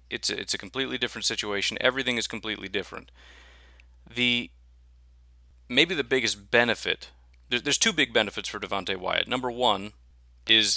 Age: 30-49